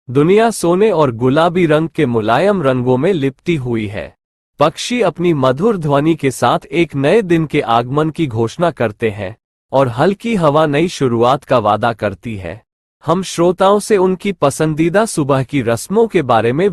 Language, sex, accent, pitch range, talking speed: Hindi, male, native, 125-180 Hz, 170 wpm